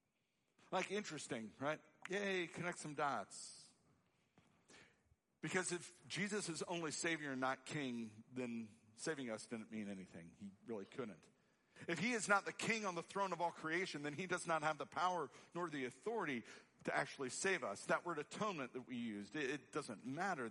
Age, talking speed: 50-69, 175 wpm